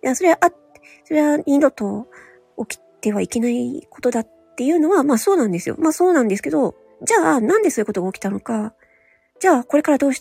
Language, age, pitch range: Japanese, 40-59, 205-320 Hz